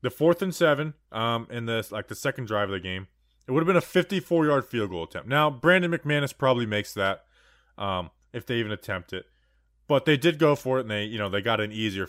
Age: 20-39